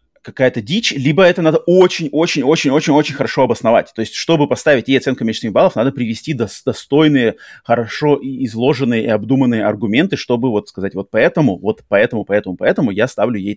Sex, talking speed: male, 170 wpm